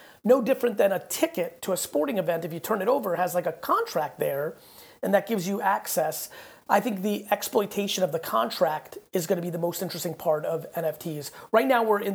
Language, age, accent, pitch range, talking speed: English, 30-49, American, 175-205 Hz, 220 wpm